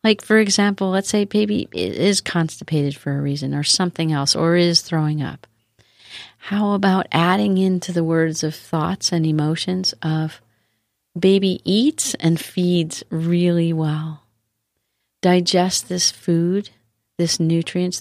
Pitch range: 115-180 Hz